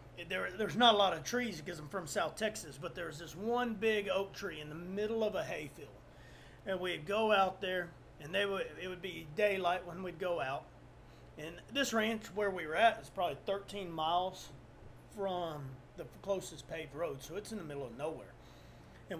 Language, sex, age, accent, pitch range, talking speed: English, male, 30-49, American, 175-215 Hz, 205 wpm